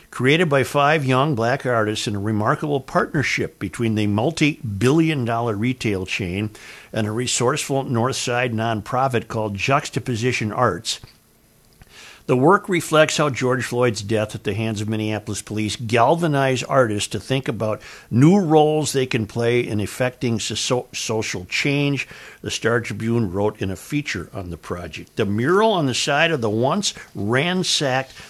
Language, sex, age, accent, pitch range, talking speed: English, male, 60-79, American, 110-140 Hz, 150 wpm